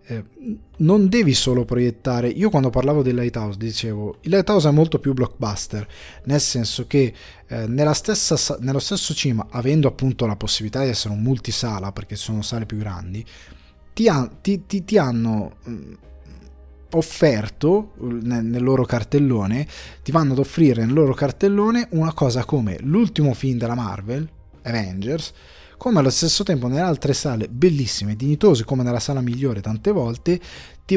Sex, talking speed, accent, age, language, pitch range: male, 150 wpm, native, 20-39, Italian, 115-155 Hz